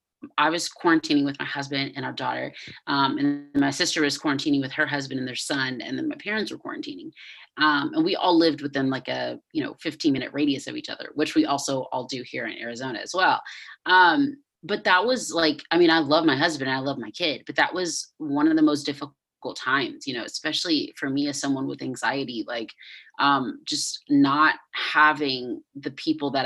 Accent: American